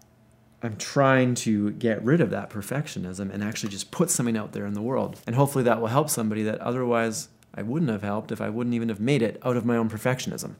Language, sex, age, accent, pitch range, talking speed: English, male, 30-49, American, 110-130 Hz, 240 wpm